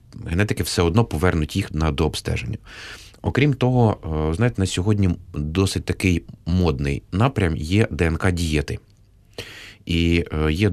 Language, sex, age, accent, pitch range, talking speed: Ukrainian, male, 30-49, native, 80-105 Hz, 115 wpm